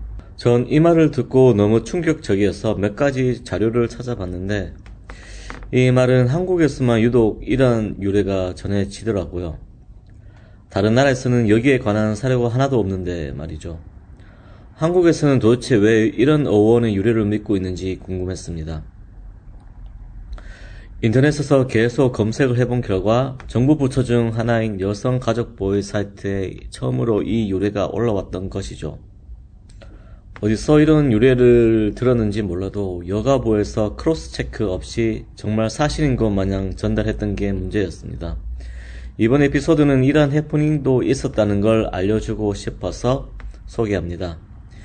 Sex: male